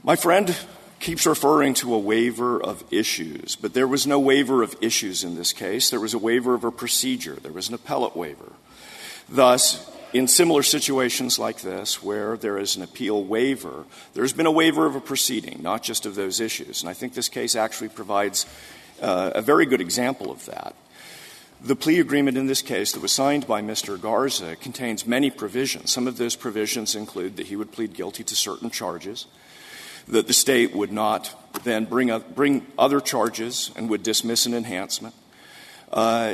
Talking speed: 190 wpm